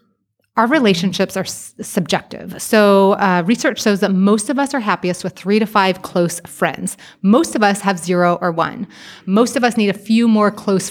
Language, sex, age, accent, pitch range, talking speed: English, female, 30-49, American, 180-220 Hz, 195 wpm